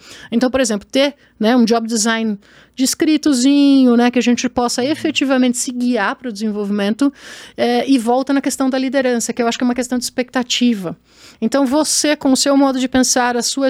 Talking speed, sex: 205 wpm, female